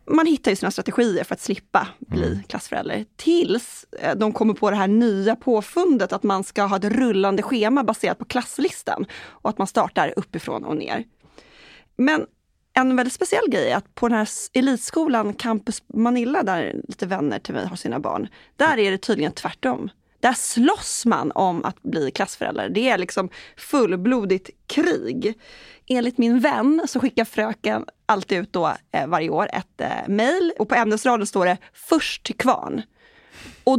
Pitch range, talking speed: 210-275 Hz, 170 wpm